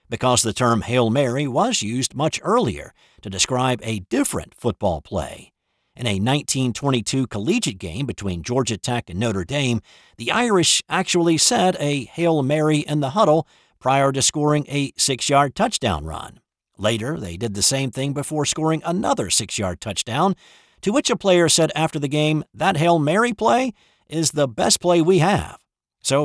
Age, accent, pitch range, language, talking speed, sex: 50-69, American, 115-160 Hz, English, 165 wpm, male